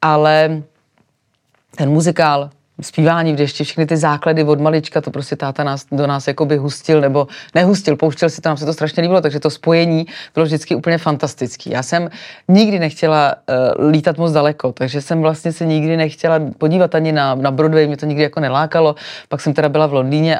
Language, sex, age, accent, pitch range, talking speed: Czech, female, 30-49, native, 140-160 Hz, 190 wpm